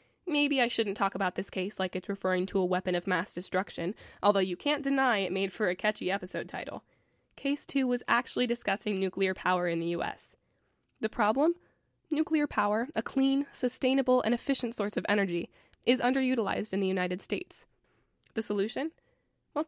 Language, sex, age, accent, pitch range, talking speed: English, female, 10-29, American, 195-255 Hz, 175 wpm